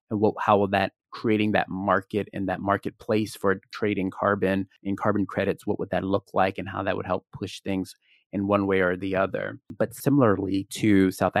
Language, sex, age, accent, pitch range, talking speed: English, male, 30-49, American, 100-115 Hz, 200 wpm